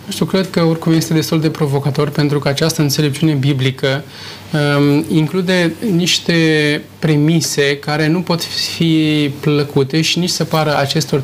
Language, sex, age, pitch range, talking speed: Romanian, male, 20-39, 145-165 Hz, 145 wpm